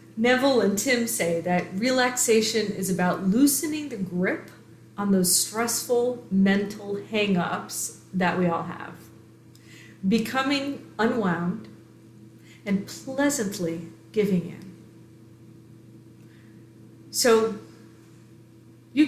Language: English